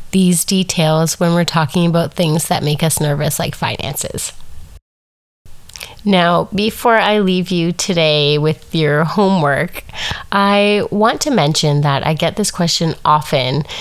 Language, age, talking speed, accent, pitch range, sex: English, 30-49, 140 wpm, American, 150-200 Hz, female